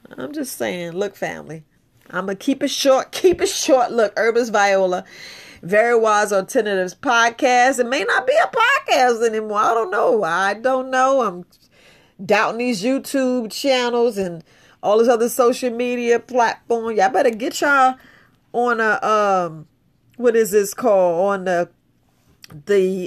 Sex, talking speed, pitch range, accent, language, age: female, 155 wpm, 180-235 Hz, American, English, 40-59